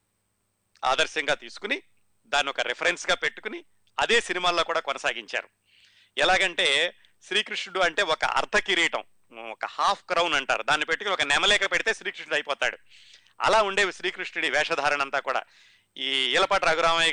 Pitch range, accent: 130-180 Hz, native